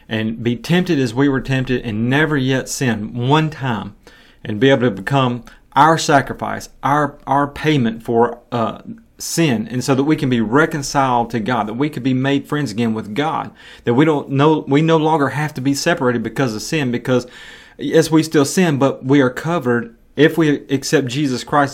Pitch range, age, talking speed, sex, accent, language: 120-150 Hz, 30-49, 200 wpm, male, American, English